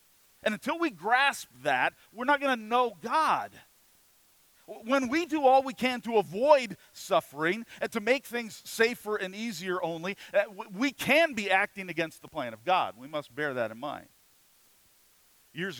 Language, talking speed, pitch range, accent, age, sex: English, 165 wpm, 170-255 Hz, American, 40-59, male